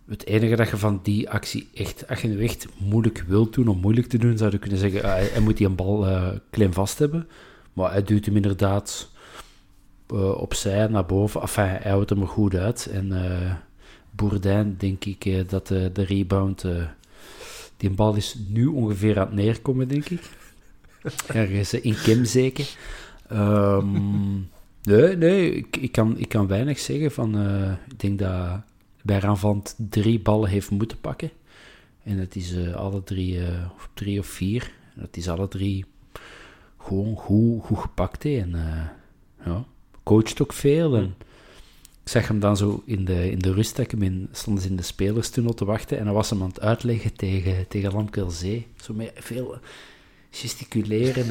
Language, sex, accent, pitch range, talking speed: Dutch, male, Dutch, 95-115 Hz, 180 wpm